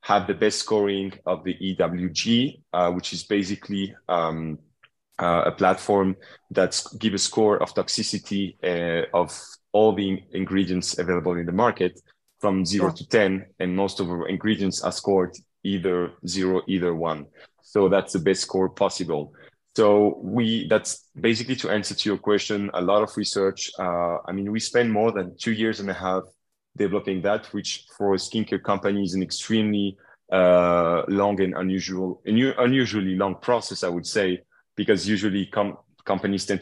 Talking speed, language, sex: 165 wpm, English, male